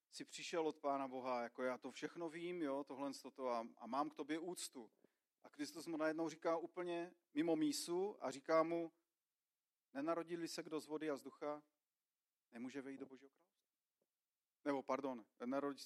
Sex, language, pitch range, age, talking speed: male, Czech, 150-205 Hz, 40-59, 180 wpm